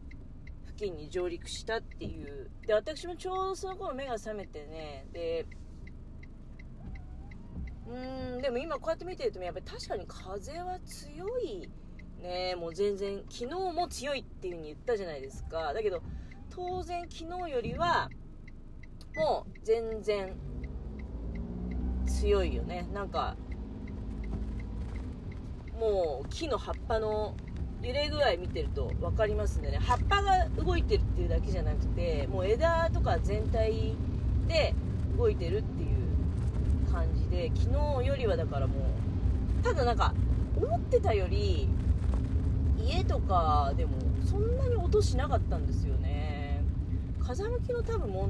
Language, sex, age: Japanese, female, 30-49